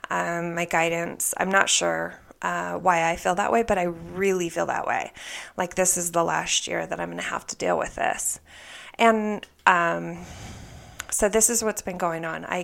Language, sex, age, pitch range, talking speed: English, female, 20-39, 170-210 Hz, 205 wpm